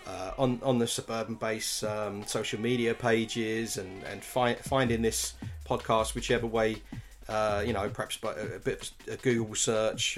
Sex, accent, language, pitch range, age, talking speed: male, British, English, 110-140 Hz, 30-49, 175 wpm